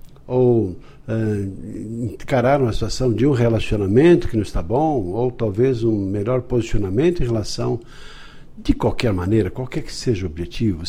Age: 60-79